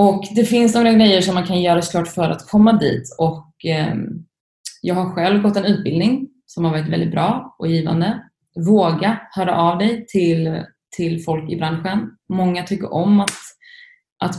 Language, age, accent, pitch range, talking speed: Swedish, 20-39, native, 165-200 Hz, 170 wpm